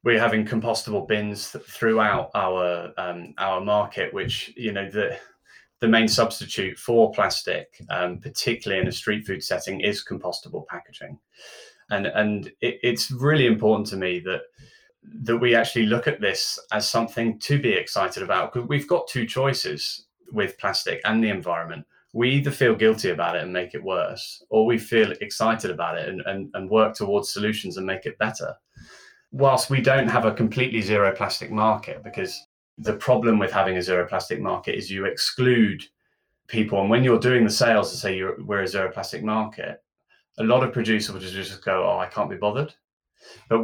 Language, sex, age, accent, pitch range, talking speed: English, male, 20-39, British, 105-120 Hz, 185 wpm